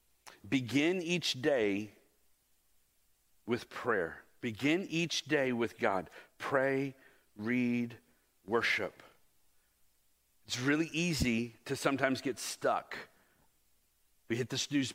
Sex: male